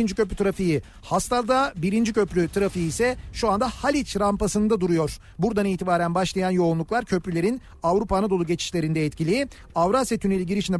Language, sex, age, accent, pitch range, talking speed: Turkish, male, 40-59, native, 170-220 Hz, 140 wpm